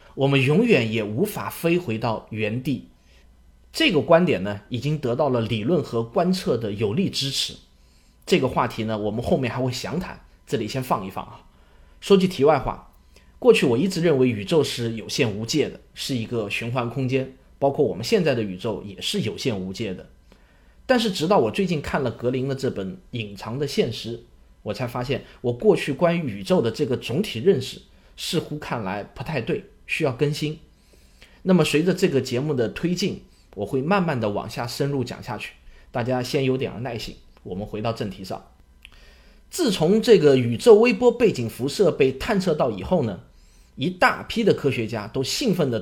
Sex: male